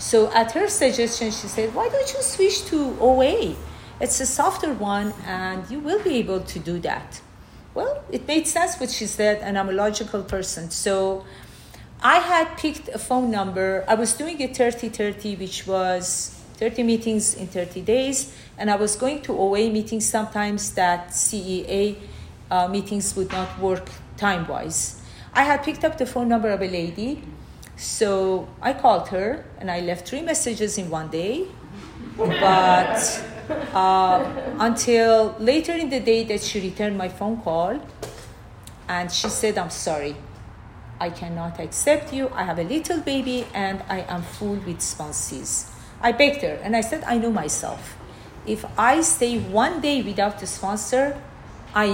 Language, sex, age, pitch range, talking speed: English, female, 40-59, 185-255 Hz, 165 wpm